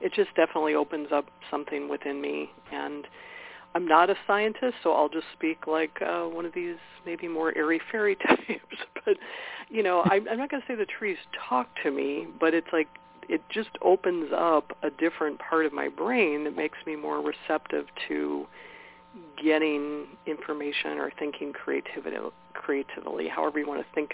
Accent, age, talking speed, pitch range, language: American, 50-69, 175 wpm, 150-175 Hz, English